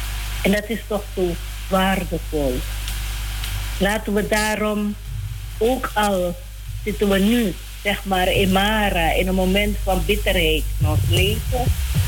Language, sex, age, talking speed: Dutch, female, 50-69, 130 wpm